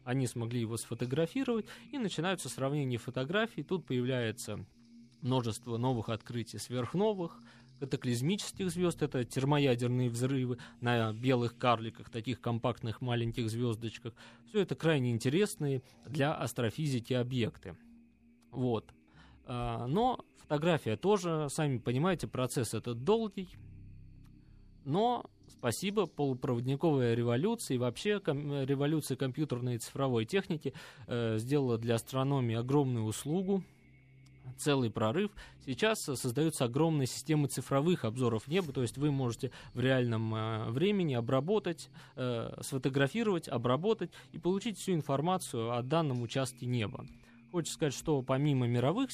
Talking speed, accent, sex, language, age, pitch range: 115 wpm, native, male, Russian, 20-39, 120-155 Hz